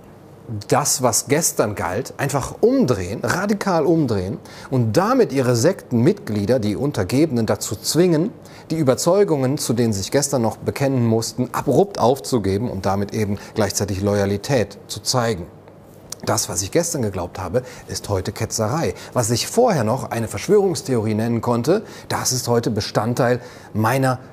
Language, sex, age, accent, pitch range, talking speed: German, male, 30-49, German, 105-130 Hz, 140 wpm